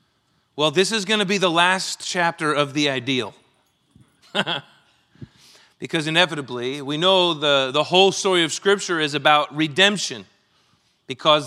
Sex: male